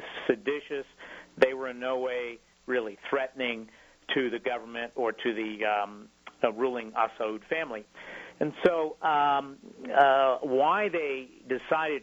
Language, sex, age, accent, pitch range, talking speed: English, male, 50-69, American, 110-130 Hz, 130 wpm